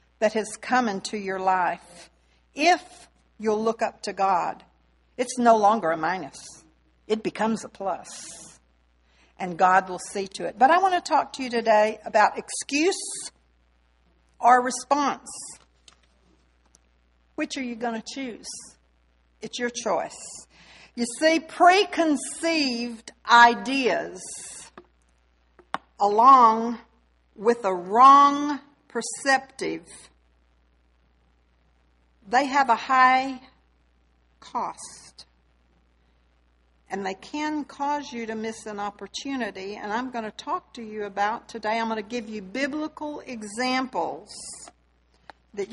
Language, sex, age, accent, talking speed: English, female, 60-79, American, 115 wpm